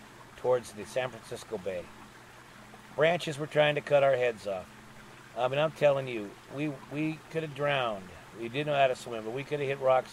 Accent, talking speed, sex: American, 200 wpm, male